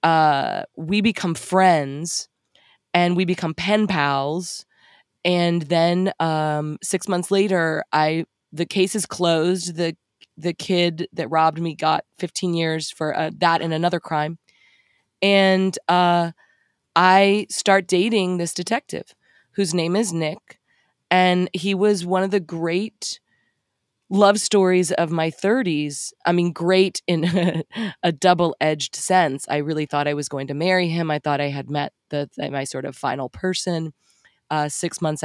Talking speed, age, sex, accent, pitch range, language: 150 wpm, 20-39, female, American, 150-180 Hz, English